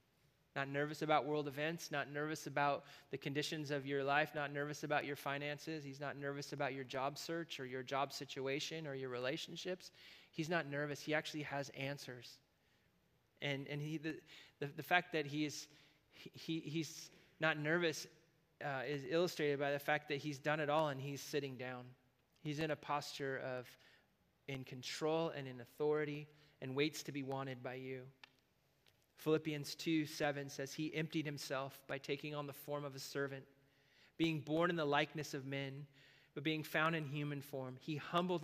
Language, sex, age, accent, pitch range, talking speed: English, male, 30-49, American, 140-155 Hz, 180 wpm